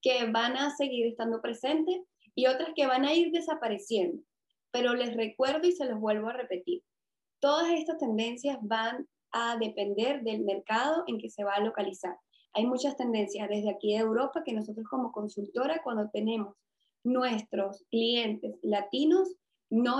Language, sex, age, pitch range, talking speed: Spanish, female, 20-39, 215-275 Hz, 160 wpm